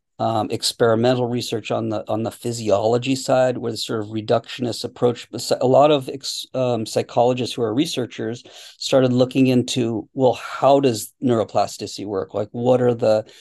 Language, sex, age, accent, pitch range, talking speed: English, male, 40-59, American, 115-130 Hz, 160 wpm